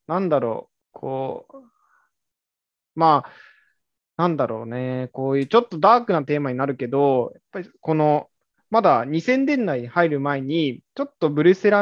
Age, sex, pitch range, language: 20-39, male, 135-200 Hz, Japanese